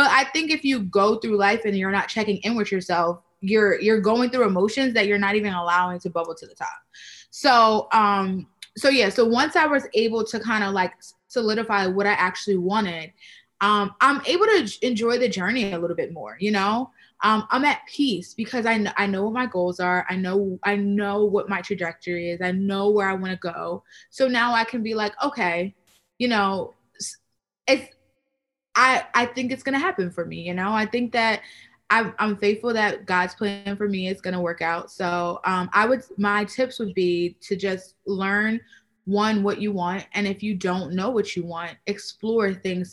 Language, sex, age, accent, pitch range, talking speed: English, female, 20-39, American, 185-225 Hz, 210 wpm